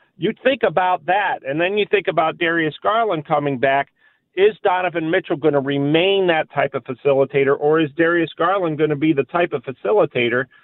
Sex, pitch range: male, 140-175 Hz